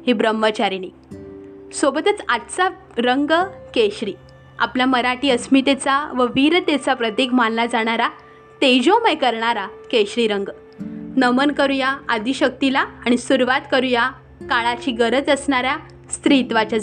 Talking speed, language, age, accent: 100 wpm, Marathi, 20-39, native